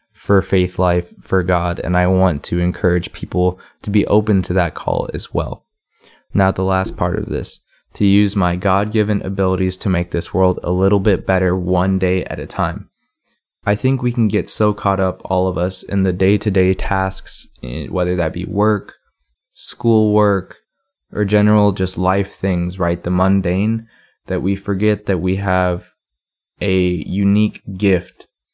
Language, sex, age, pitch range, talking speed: English, male, 20-39, 90-100 Hz, 170 wpm